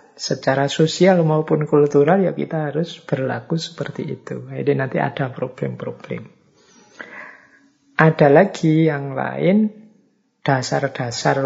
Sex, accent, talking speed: male, native, 100 wpm